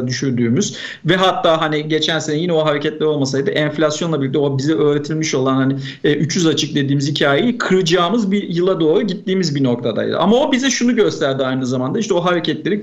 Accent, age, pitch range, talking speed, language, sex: native, 50-69, 145-200 Hz, 180 wpm, Turkish, male